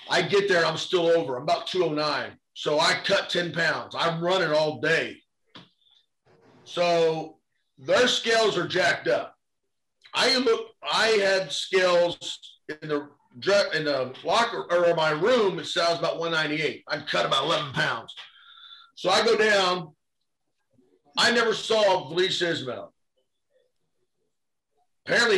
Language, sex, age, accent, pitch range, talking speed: English, male, 40-59, American, 165-220 Hz, 135 wpm